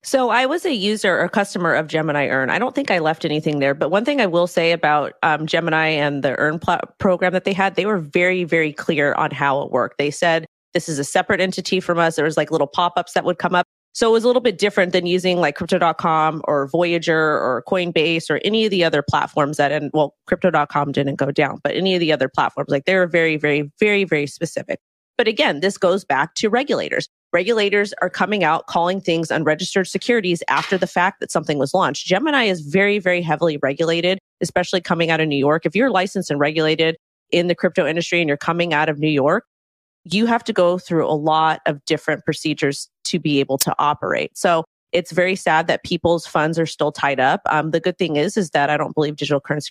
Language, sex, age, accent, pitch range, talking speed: English, female, 30-49, American, 150-185 Hz, 230 wpm